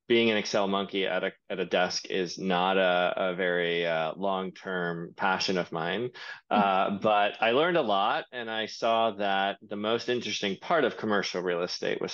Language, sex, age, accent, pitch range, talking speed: English, male, 20-39, American, 95-110 Hz, 190 wpm